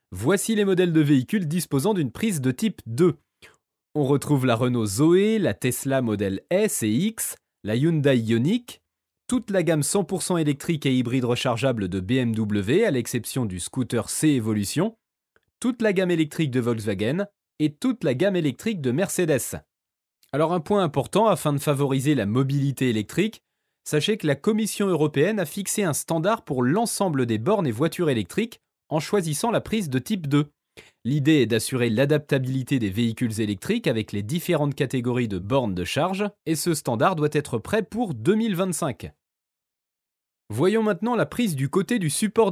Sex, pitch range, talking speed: male, 120-180 Hz, 165 wpm